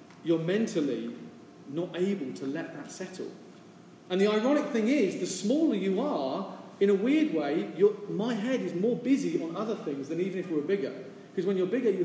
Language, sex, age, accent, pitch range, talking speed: English, male, 40-59, British, 165-225 Hz, 200 wpm